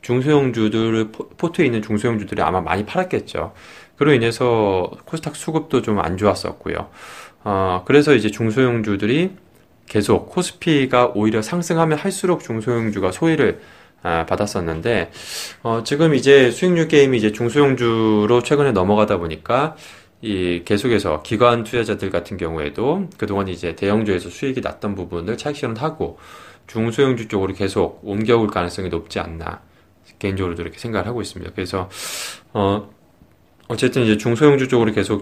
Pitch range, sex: 95-130 Hz, male